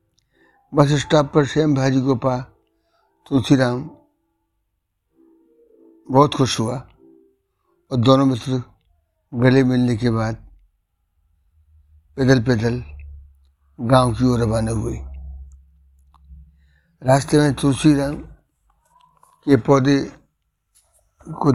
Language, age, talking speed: Hindi, 60-79, 90 wpm